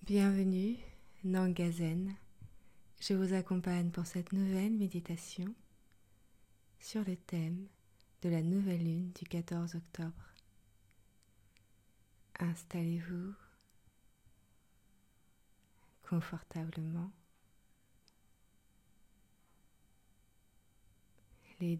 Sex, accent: female, French